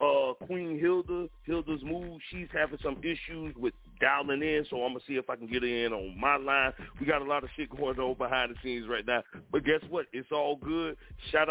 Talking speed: 235 wpm